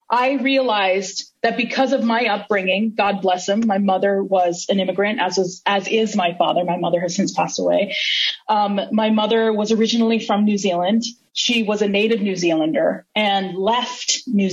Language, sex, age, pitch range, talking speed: English, female, 30-49, 195-240 Hz, 180 wpm